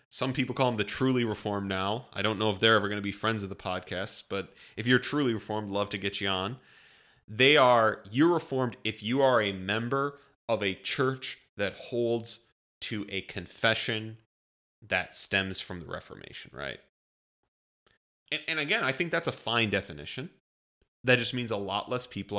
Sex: male